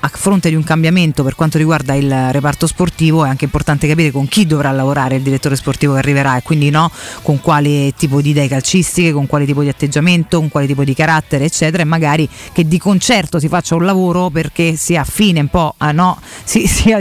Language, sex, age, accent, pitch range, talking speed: Italian, female, 30-49, native, 150-185 Hz, 215 wpm